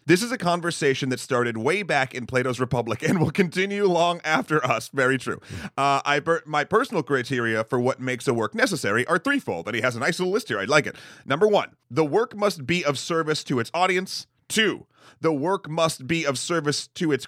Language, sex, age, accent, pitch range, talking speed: English, male, 30-49, American, 130-165 Hz, 225 wpm